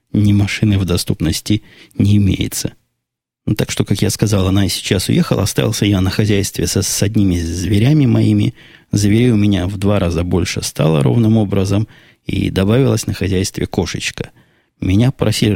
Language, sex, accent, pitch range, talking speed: Russian, male, native, 100-125 Hz, 160 wpm